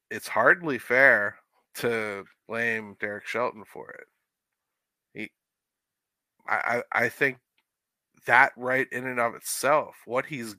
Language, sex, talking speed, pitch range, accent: English, male, 115 wpm, 110-125 Hz, American